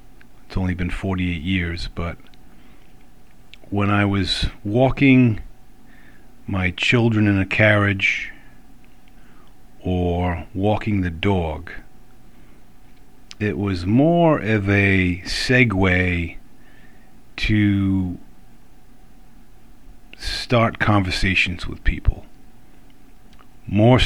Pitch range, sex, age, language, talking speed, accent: 95-115 Hz, male, 50-69, English, 75 wpm, American